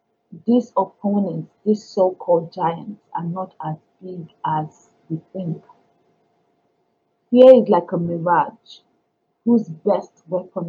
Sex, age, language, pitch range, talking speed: female, 40-59, English, 165-210 Hz, 110 wpm